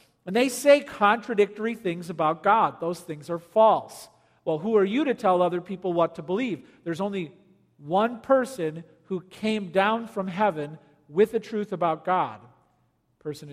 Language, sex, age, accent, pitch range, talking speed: English, male, 50-69, American, 160-230 Hz, 170 wpm